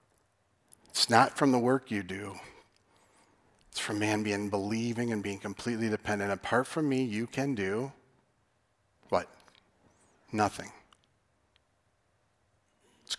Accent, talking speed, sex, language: American, 115 wpm, male, English